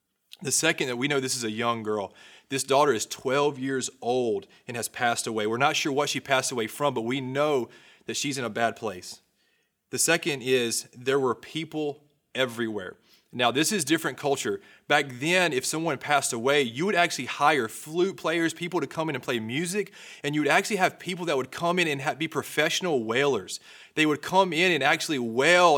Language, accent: English, American